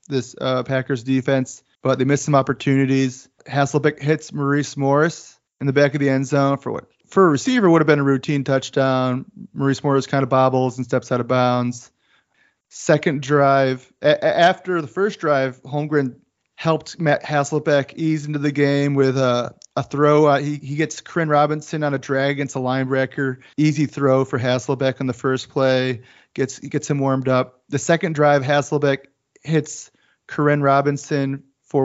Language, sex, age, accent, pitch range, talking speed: English, male, 30-49, American, 130-150 Hz, 175 wpm